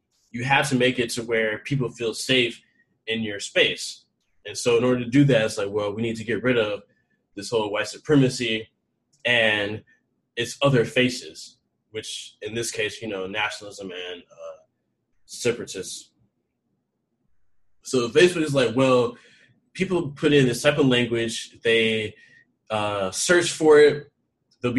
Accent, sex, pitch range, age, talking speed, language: American, male, 110-140 Hz, 20-39, 155 wpm, English